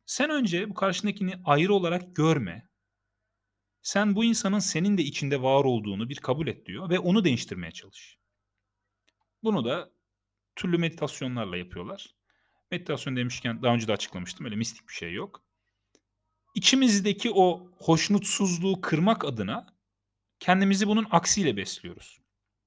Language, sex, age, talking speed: Turkish, male, 40-59, 125 wpm